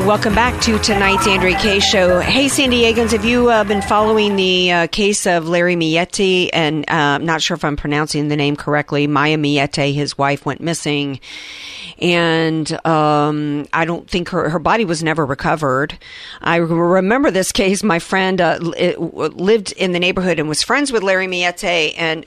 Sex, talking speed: female, 180 wpm